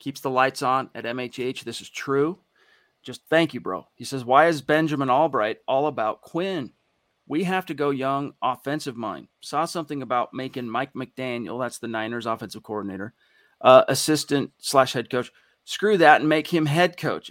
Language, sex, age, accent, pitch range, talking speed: English, male, 40-59, American, 120-155 Hz, 180 wpm